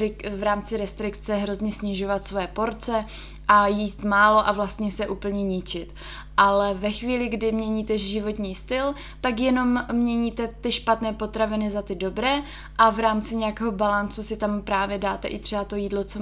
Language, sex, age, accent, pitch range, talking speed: Czech, female, 20-39, native, 195-220 Hz, 165 wpm